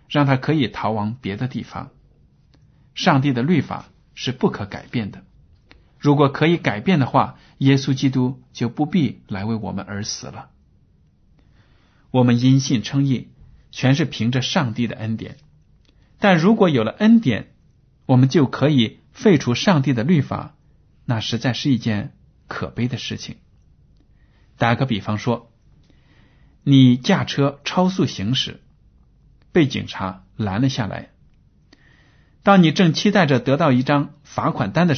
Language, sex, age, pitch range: Chinese, male, 50-69, 110-145 Hz